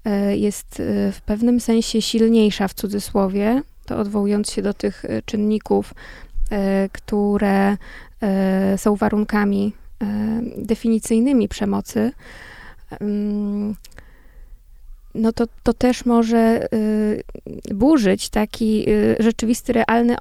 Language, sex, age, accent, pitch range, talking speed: Polish, female, 20-39, native, 205-230 Hz, 80 wpm